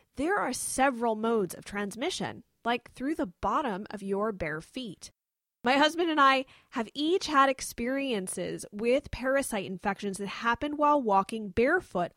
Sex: female